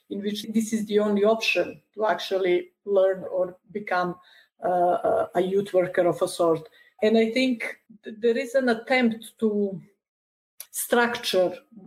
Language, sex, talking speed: English, female, 145 wpm